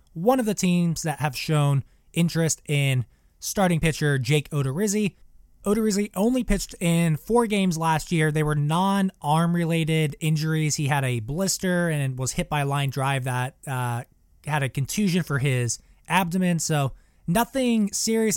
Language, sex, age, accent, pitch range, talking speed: English, male, 20-39, American, 150-195 Hz, 155 wpm